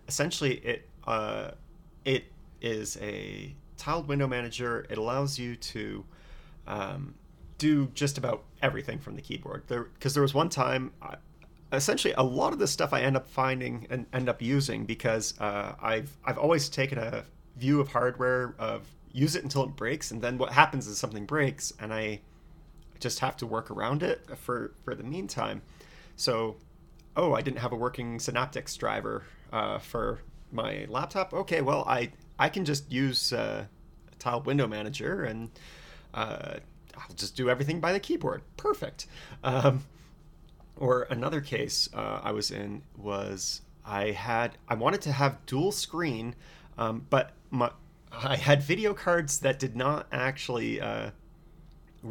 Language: English